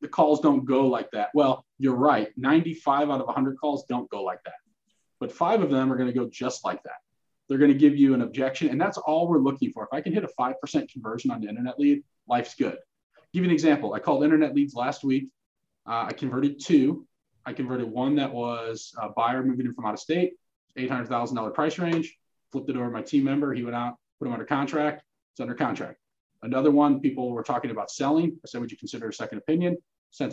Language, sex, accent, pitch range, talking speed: English, male, American, 125-155 Hz, 235 wpm